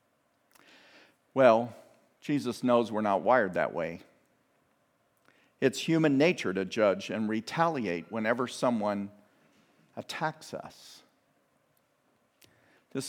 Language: English